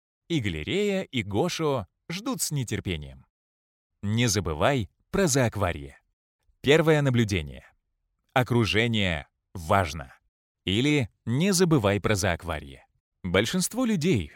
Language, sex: Russian, male